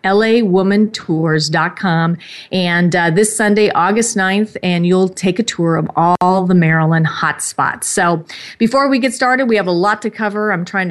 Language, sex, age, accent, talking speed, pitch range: English, female, 30-49, American, 165 wpm, 175-205 Hz